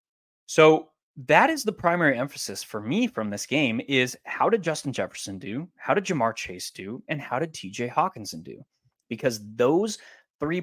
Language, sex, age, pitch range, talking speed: English, male, 20-39, 110-170 Hz, 175 wpm